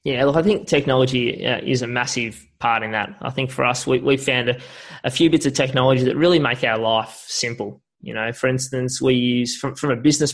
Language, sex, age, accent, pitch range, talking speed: English, male, 20-39, Australian, 115-130 Hz, 240 wpm